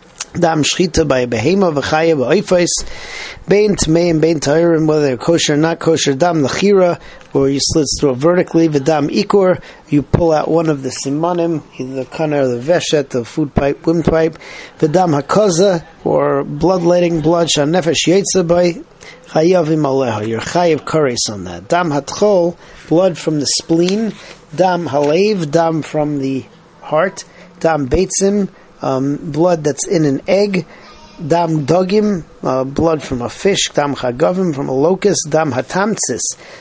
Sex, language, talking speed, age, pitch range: male, English, 150 wpm, 40-59, 140-175 Hz